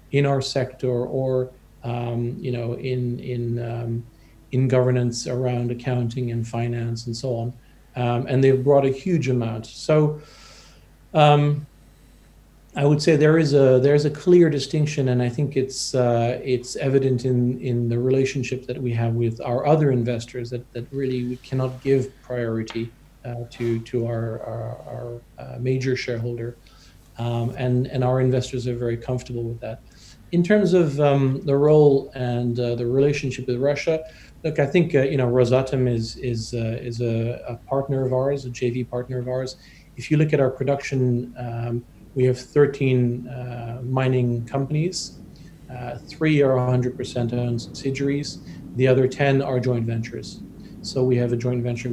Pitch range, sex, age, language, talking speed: 120-135 Hz, male, 40-59, English, 170 wpm